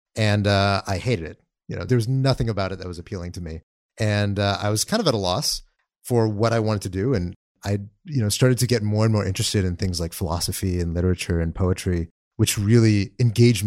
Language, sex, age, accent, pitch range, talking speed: English, male, 30-49, American, 95-120 Hz, 235 wpm